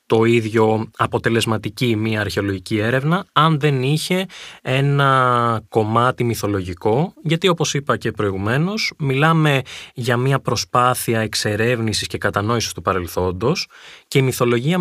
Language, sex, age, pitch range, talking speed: Greek, male, 20-39, 105-140 Hz, 120 wpm